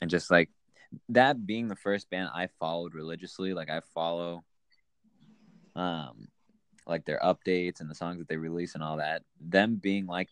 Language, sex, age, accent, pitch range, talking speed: English, male, 20-39, American, 80-105 Hz, 175 wpm